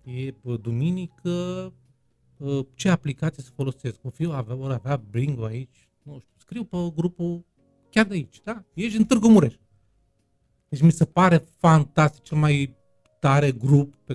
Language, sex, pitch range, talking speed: Romanian, male, 125-170 Hz, 155 wpm